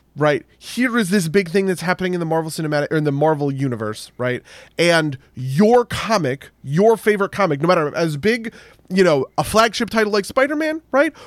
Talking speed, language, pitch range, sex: 195 wpm, English, 130-180 Hz, male